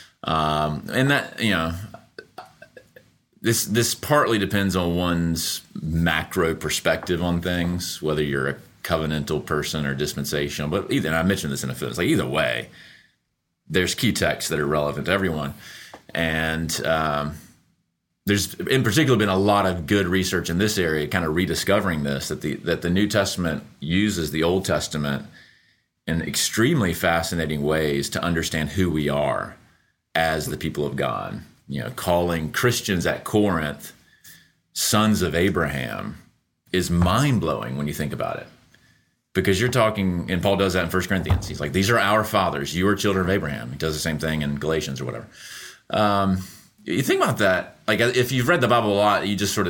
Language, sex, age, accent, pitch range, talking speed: English, male, 30-49, American, 80-100 Hz, 175 wpm